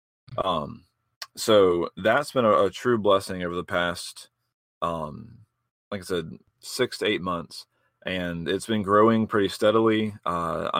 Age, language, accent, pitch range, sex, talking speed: 30-49, English, American, 95-105 Hz, male, 145 wpm